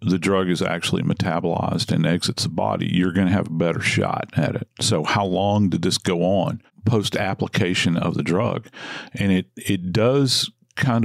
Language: English